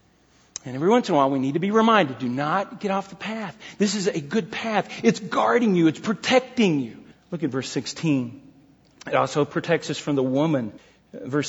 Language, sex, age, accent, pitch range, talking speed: English, male, 40-59, American, 145-205 Hz, 210 wpm